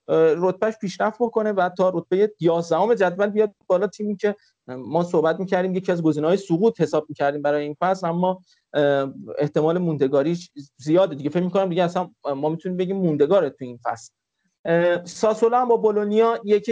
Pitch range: 165-210 Hz